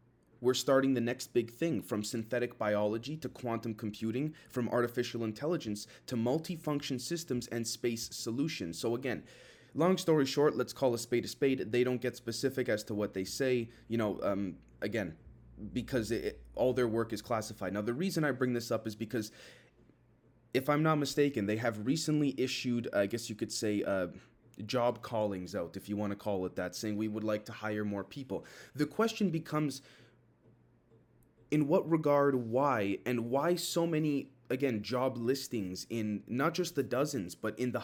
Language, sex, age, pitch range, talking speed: English, male, 20-39, 115-140 Hz, 180 wpm